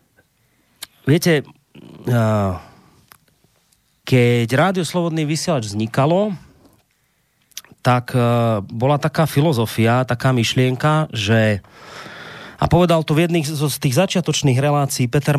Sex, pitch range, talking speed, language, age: male, 120-155 Hz, 85 wpm, Slovak, 30-49